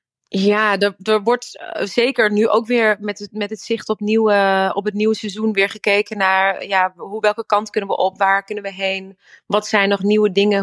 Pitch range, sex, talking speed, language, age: 190-220 Hz, female, 215 wpm, Dutch, 30-49